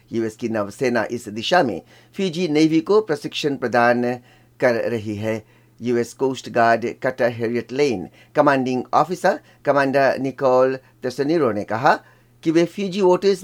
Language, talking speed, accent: Hindi, 130 wpm, native